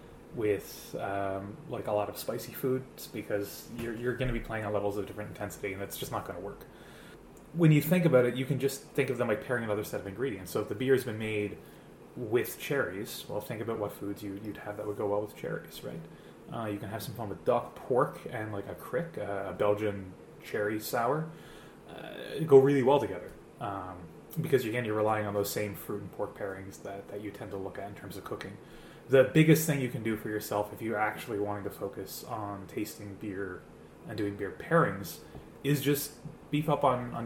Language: English